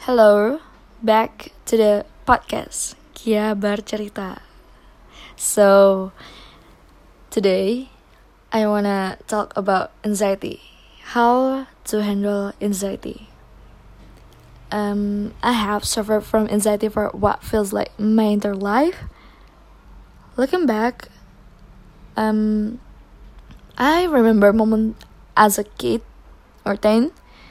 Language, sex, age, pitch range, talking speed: Indonesian, female, 20-39, 205-235 Hz, 95 wpm